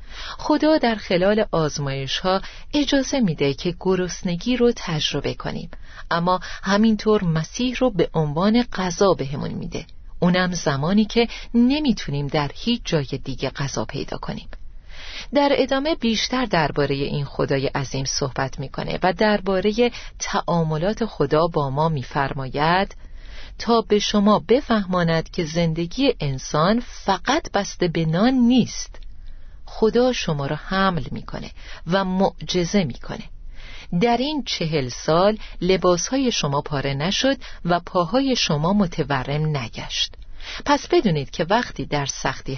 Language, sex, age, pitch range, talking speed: Persian, female, 40-59, 150-225 Hz, 125 wpm